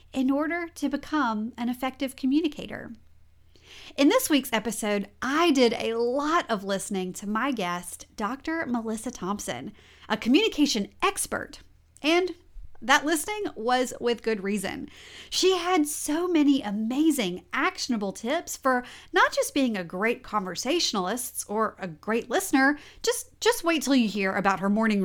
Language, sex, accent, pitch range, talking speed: English, female, American, 210-315 Hz, 145 wpm